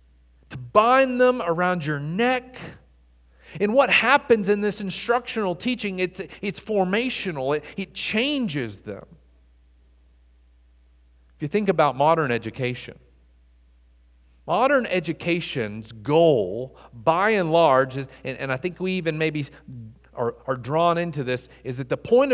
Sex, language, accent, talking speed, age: male, English, American, 130 wpm, 40-59